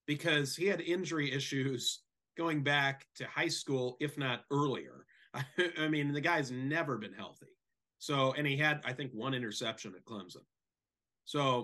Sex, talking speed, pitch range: male, 165 wpm, 120-155 Hz